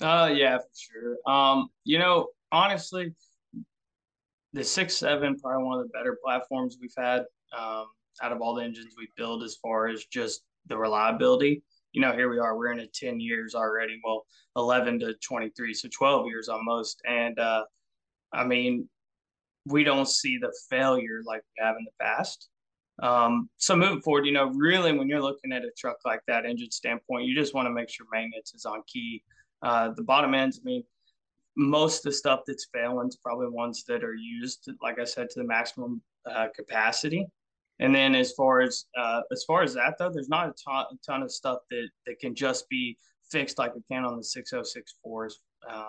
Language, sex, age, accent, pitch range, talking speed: English, male, 20-39, American, 115-155 Hz, 200 wpm